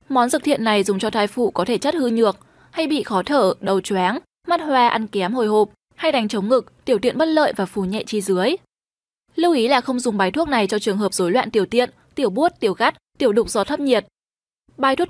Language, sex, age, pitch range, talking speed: Vietnamese, female, 10-29, 210-275 Hz, 255 wpm